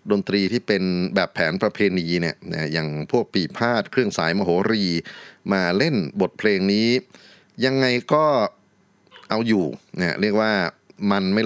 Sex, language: male, Thai